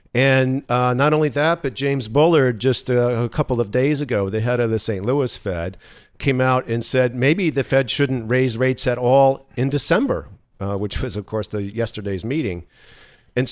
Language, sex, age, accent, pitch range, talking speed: English, male, 50-69, American, 115-135 Hz, 200 wpm